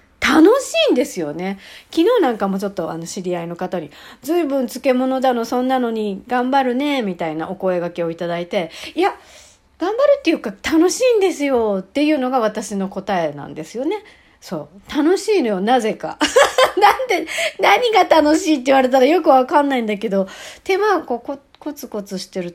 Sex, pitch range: female, 190-315 Hz